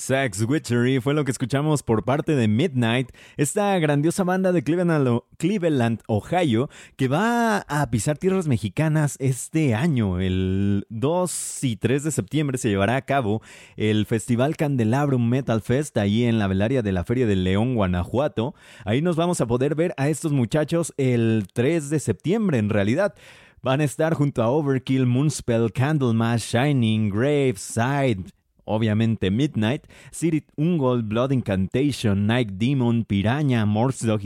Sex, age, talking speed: male, 30-49, 145 wpm